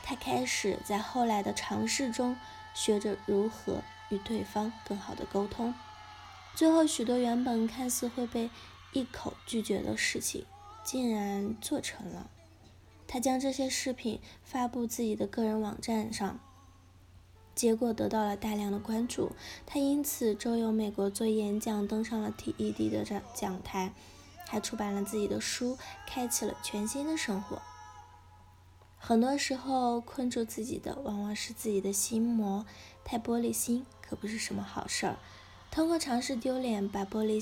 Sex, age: female, 10-29